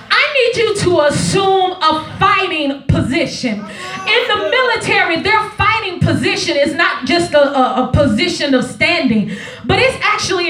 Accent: American